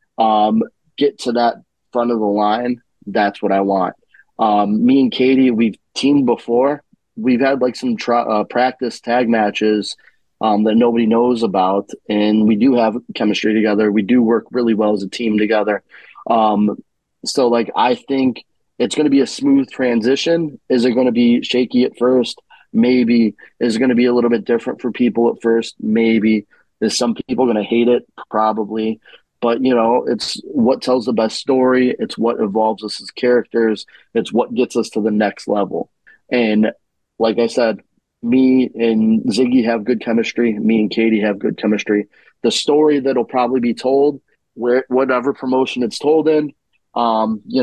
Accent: American